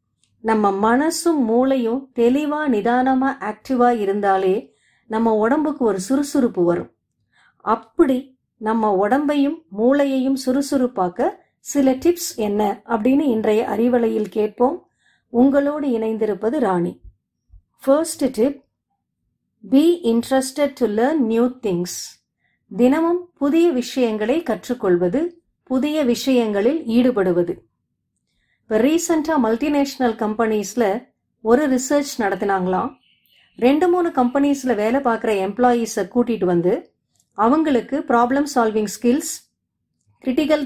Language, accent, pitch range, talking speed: Tamil, native, 215-280 Hz, 85 wpm